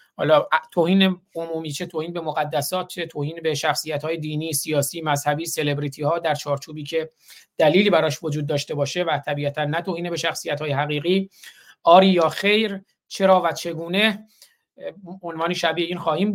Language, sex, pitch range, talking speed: Persian, male, 155-185 Hz, 155 wpm